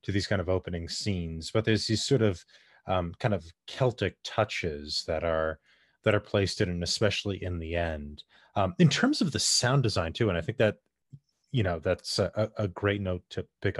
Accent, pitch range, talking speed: American, 90-115 Hz, 210 wpm